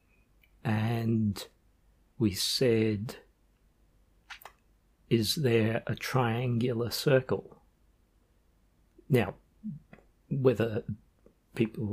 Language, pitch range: English, 105-125 Hz